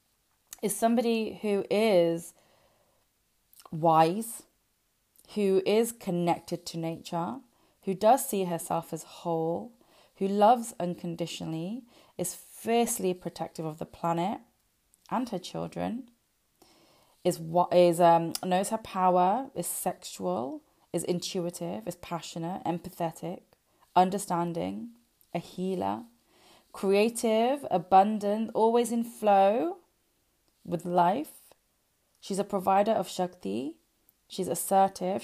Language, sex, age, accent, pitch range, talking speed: English, female, 20-39, British, 170-205 Hz, 100 wpm